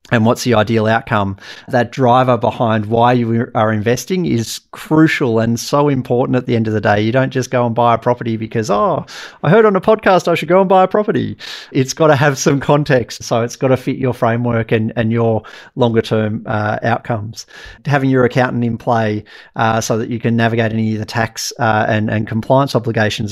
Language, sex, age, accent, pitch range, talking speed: English, male, 40-59, Australian, 115-130 Hz, 220 wpm